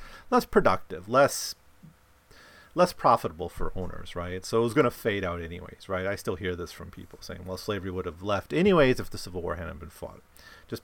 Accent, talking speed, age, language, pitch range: American, 210 wpm, 40-59, English, 95-140 Hz